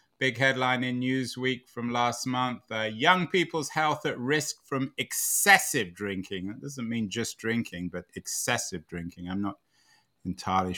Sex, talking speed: male, 150 wpm